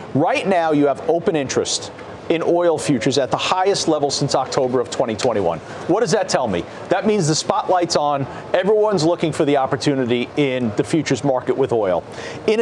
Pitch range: 150-215 Hz